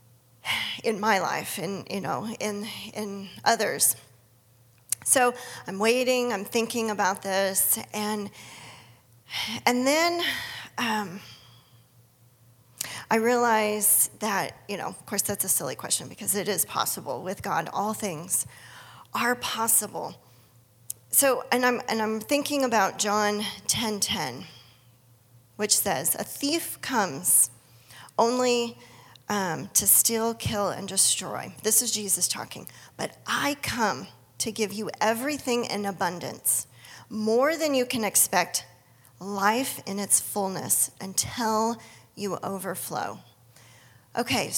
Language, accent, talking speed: English, American, 120 wpm